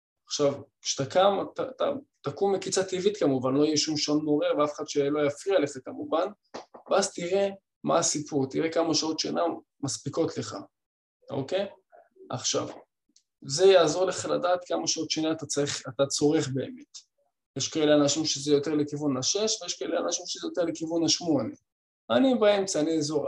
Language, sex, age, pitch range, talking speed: Hebrew, male, 20-39, 140-170 Hz, 155 wpm